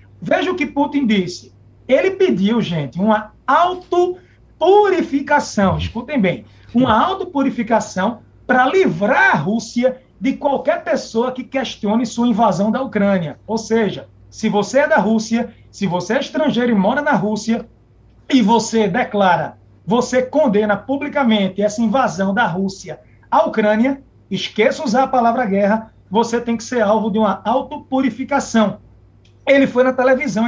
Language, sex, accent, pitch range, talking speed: Portuguese, male, Brazilian, 205-275 Hz, 140 wpm